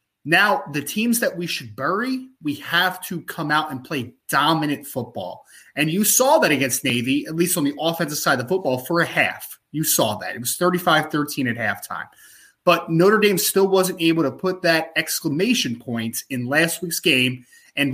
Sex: male